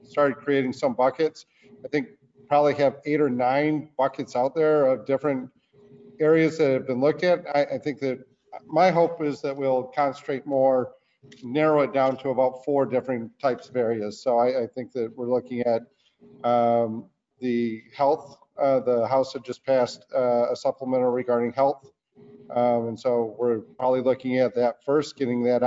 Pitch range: 125-140 Hz